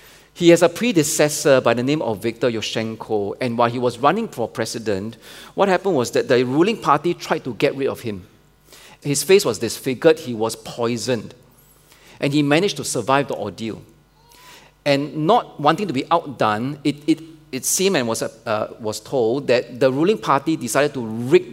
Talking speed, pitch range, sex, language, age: 180 wpm, 115-150 Hz, male, English, 40-59